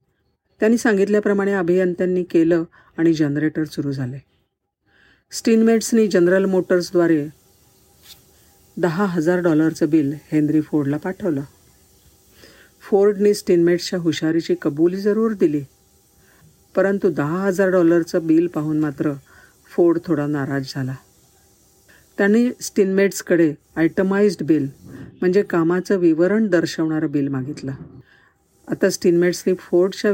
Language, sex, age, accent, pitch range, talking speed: Marathi, female, 50-69, native, 145-190 Hz, 95 wpm